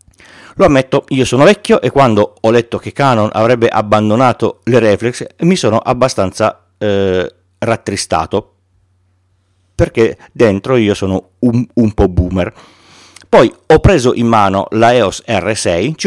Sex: male